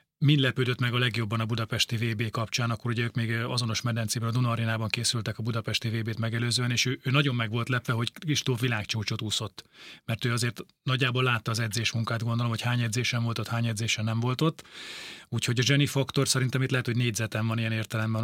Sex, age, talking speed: male, 30-49, 205 wpm